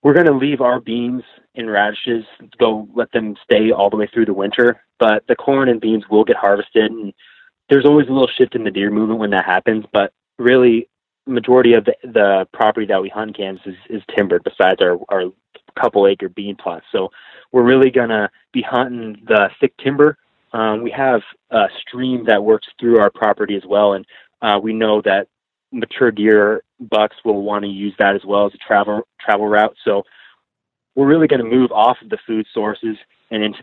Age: 20-39